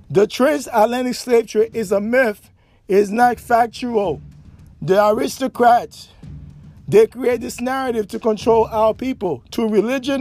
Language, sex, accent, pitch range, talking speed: English, male, American, 195-245 Hz, 130 wpm